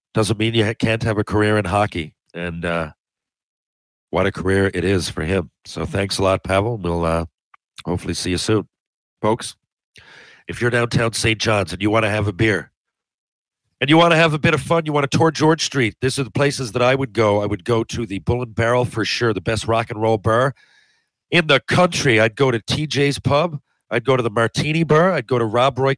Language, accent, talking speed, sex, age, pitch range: English, American, 230 wpm, male, 50-69, 105-130 Hz